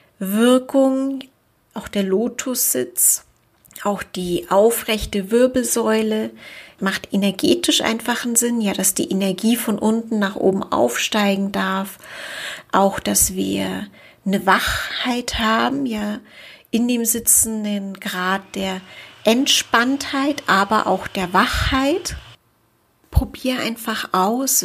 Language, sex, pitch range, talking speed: German, female, 190-230 Hz, 105 wpm